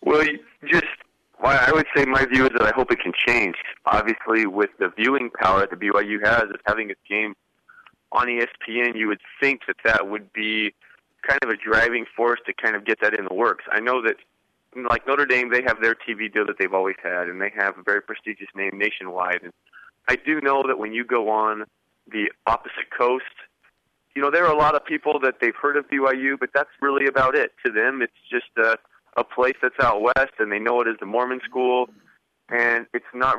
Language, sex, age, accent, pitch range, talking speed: English, male, 30-49, American, 110-130 Hz, 225 wpm